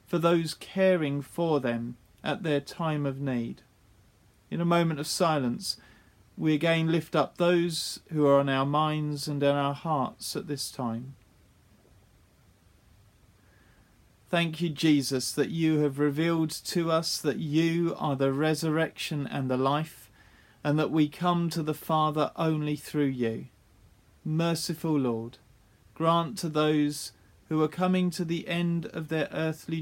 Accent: British